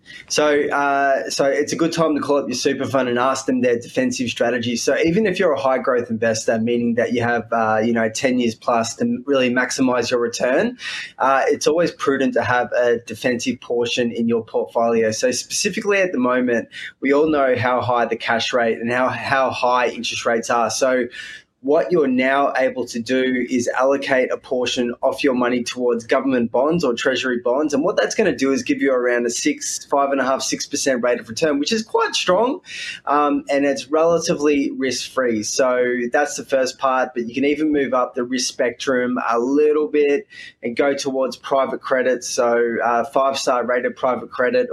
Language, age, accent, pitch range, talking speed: English, 20-39, Australian, 120-150 Hz, 205 wpm